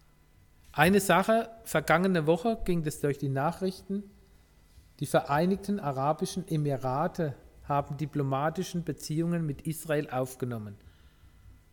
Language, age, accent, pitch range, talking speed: German, 50-69, German, 115-175 Hz, 95 wpm